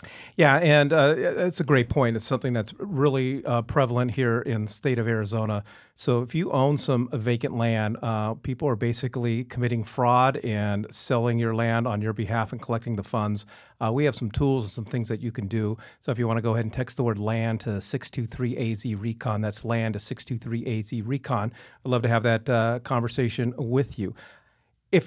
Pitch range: 110-130 Hz